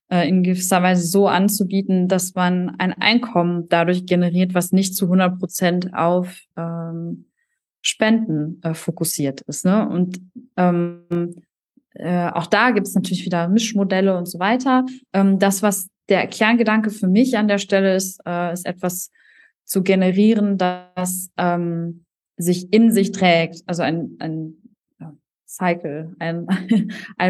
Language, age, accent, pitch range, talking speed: German, 20-39, German, 180-210 Hz, 140 wpm